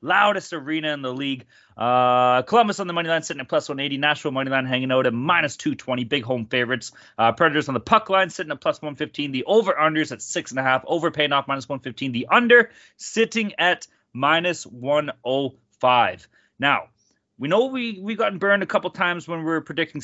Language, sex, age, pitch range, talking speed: English, male, 30-49, 120-165 Hz, 200 wpm